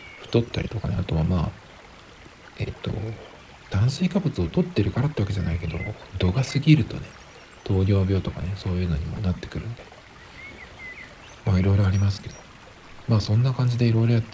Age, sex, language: 40-59, male, Japanese